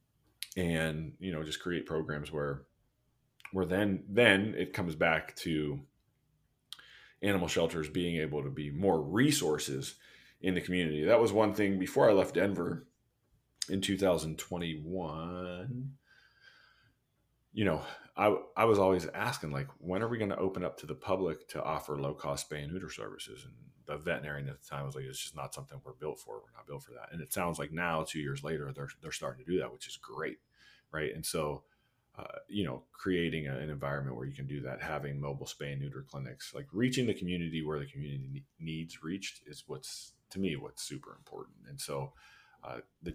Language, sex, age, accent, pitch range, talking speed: English, male, 30-49, American, 70-95 Hz, 195 wpm